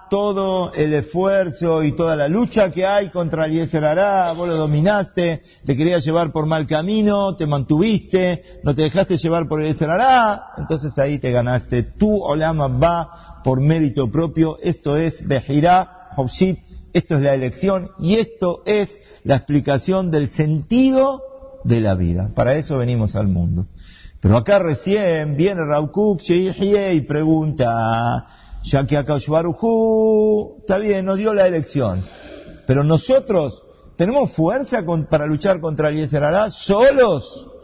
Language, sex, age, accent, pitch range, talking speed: Spanish, male, 50-69, Argentinian, 145-195 Hz, 140 wpm